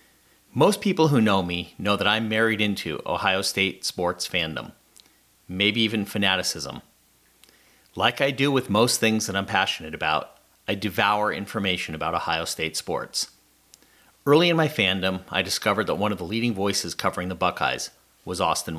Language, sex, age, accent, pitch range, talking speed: English, male, 40-59, American, 95-120 Hz, 165 wpm